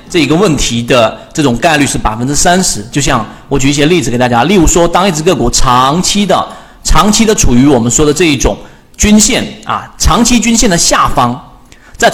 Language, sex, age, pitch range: Chinese, male, 40-59, 120-175 Hz